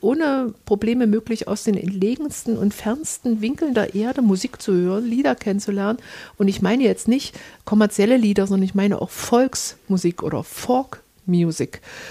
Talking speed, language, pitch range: 150 wpm, German, 200-240 Hz